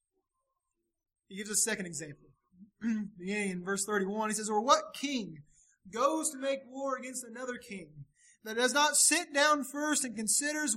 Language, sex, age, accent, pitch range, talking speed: English, male, 30-49, American, 205-320 Hz, 160 wpm